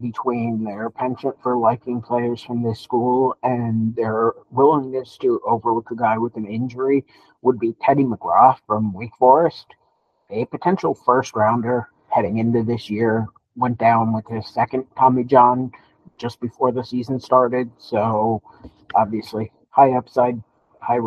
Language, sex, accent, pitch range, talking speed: English, male, American, 110-130 Hz, 140 wpm